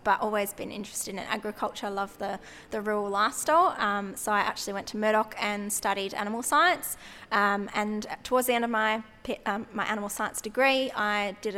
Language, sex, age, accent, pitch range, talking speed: English, female, 20-39, Australian, 200-230 Hz, 180 wpm